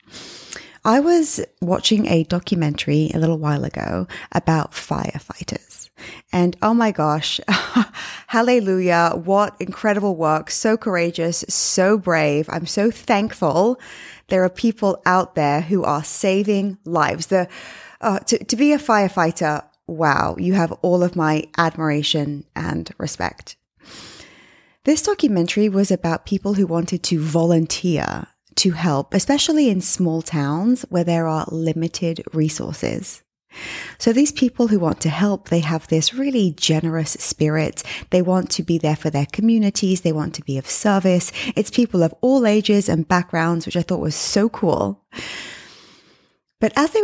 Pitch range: 160-215 Hz